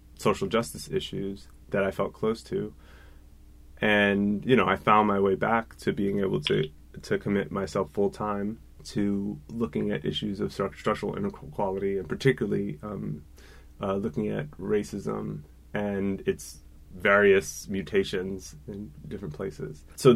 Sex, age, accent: male, 30-49, American